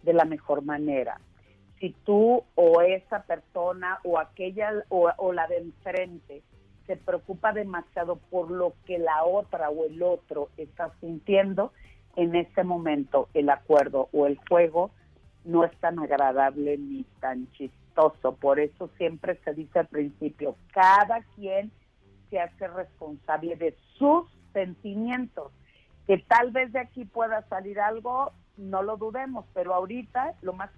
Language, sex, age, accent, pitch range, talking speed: Spanish, female, 50-69, Mexican, 155-205 Hz, 145 wpm